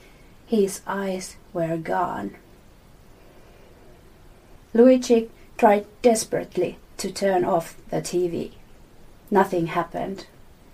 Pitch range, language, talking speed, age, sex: 175-225 Hz, English, 80 wpm, 30-49, female